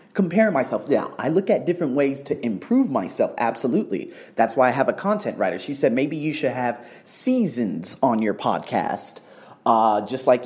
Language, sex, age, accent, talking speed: English, male, 30-49, American, 185 wpm